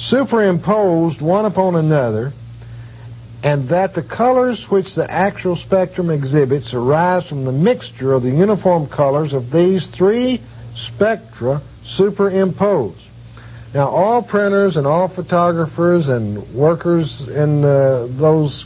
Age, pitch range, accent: 60-79, 115-165 Hz, American